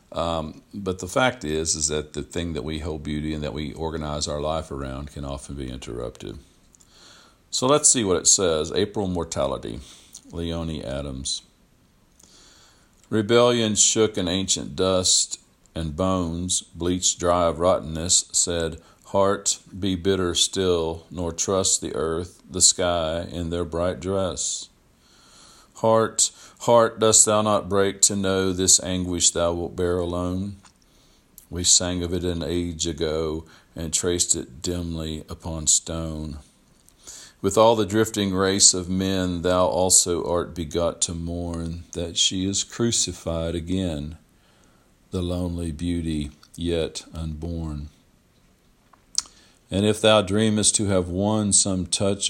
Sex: male